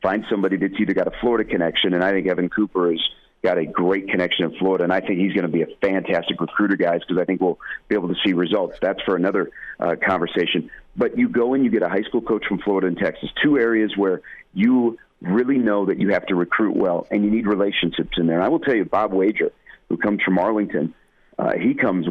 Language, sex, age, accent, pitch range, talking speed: English, male, 40-59, American, 90-105 Hz, 245 wpm